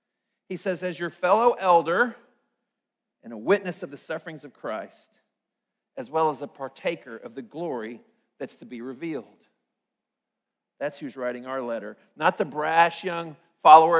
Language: English